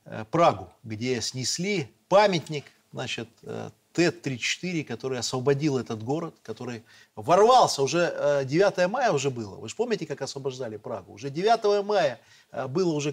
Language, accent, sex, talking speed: Russian, native, male, 130 wpm